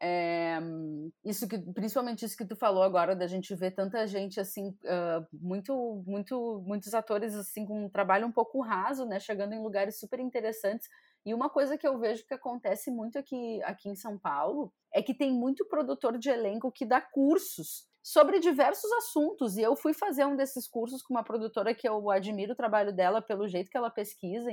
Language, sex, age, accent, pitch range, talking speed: Portuguese, female, 20-39, Brazilian, 205-290 Hz, 200 wpm